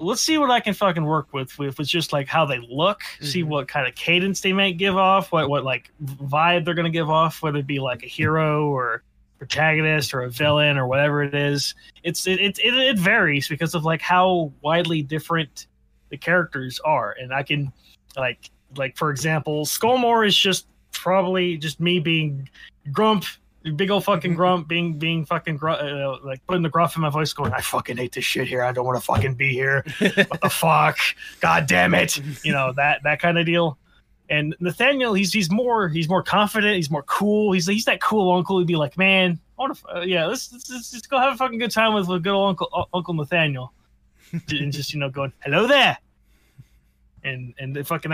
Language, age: English, 20-39